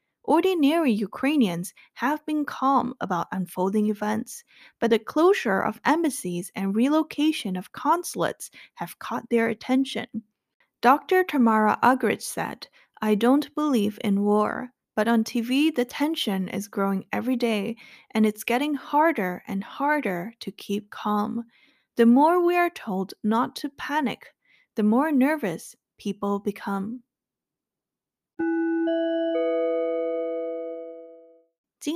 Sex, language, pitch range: female, Chinese, 200-275 Hz